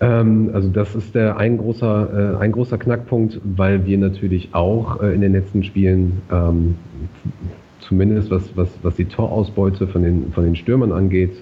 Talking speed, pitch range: 160 wpm, 90-105 Hz